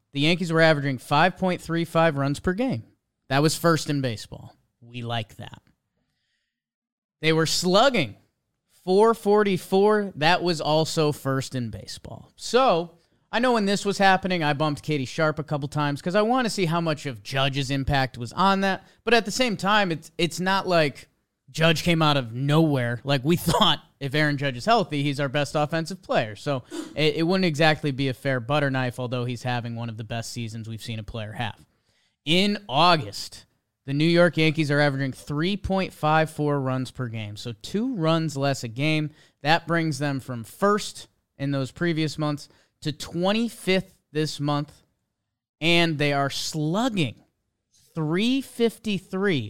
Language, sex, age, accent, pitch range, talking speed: English, male, 30-49, American, 130-175 Hz, 170 wpm